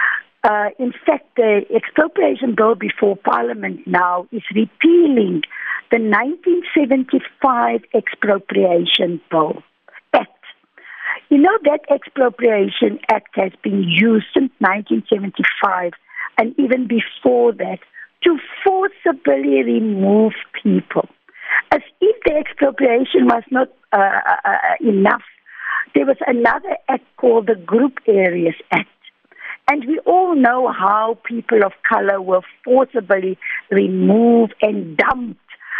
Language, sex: English, female